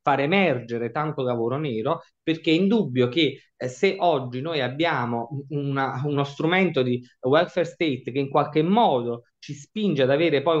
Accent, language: native, Italian